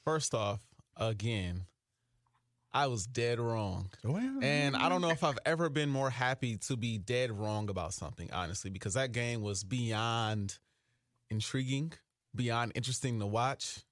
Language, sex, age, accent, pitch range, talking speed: English, male, 30-49, American, 115-145 Hz, 145 wpm